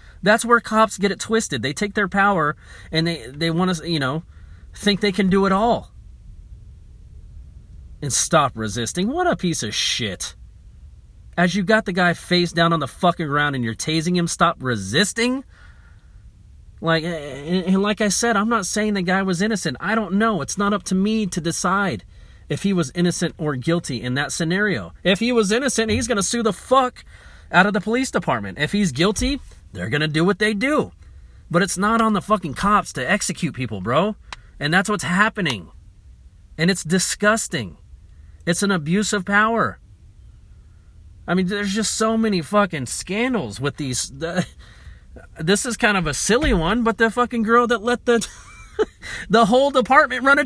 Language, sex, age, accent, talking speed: English, male, 30-49, American, 185 wpm